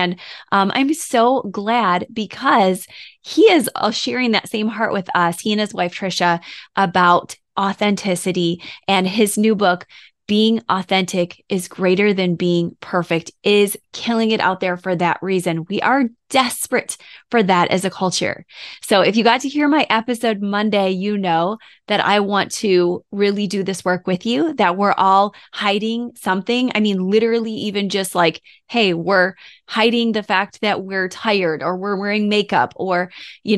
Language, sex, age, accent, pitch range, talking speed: English, female, 20-39, American, 185-220 Hz, 170 wpm